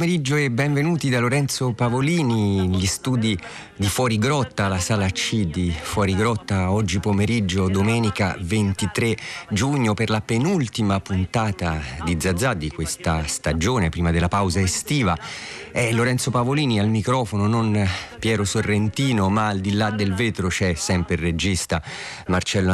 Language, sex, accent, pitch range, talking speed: Italian, male, native, 90-110 Hz, 140 wpm